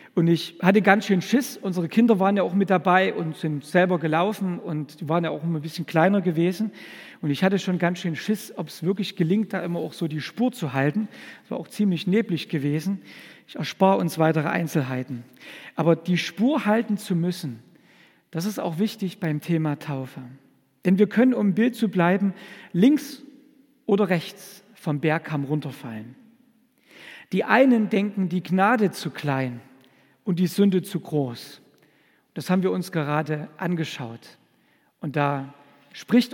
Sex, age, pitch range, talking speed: male, 50-69, 160-210 Hz, 175 wpm